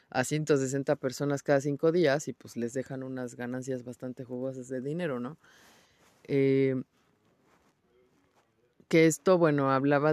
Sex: female